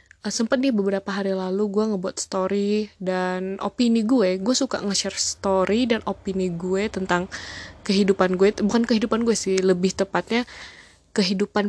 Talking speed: 145 wpm